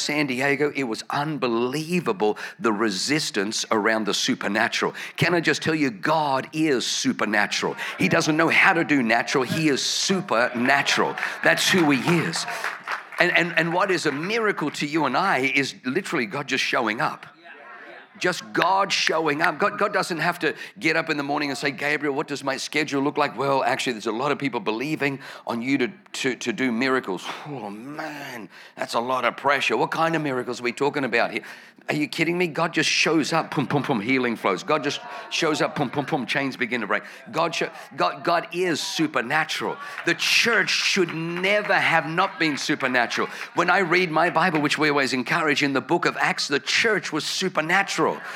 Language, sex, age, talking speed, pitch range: English, male, 50-69, 195 wpm, 135-165 Hz